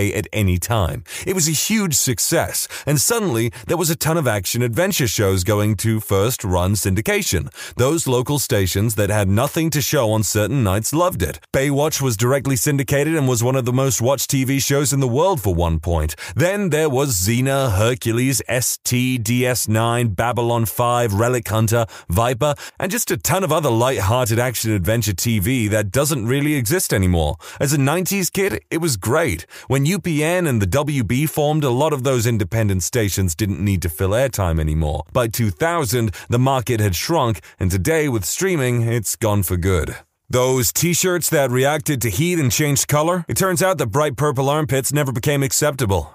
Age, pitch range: 30-49, 105-145 Hz